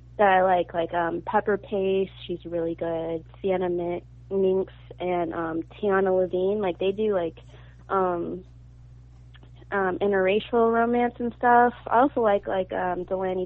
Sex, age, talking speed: female, 20-39, 140 wpm